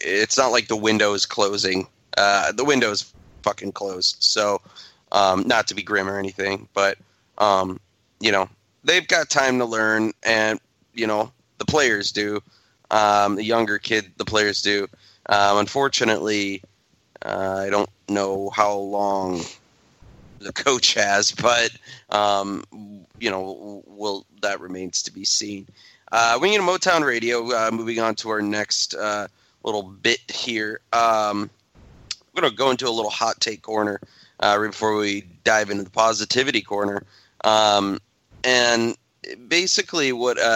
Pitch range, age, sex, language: 100-115 Hz, 30-49, male, English